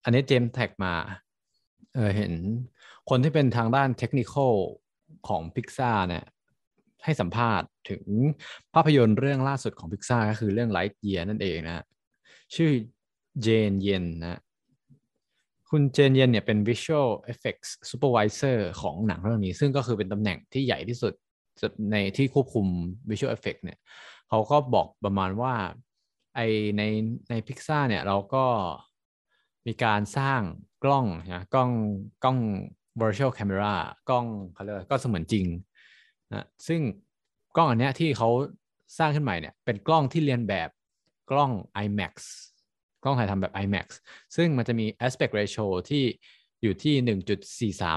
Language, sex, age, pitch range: Thai, male, 20-39, 100-130 Hz